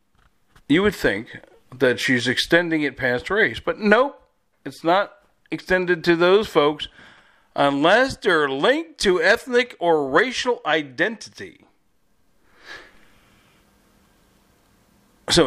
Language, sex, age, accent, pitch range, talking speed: English, male, 50-69, American, 120-185 Hz, 100 wpm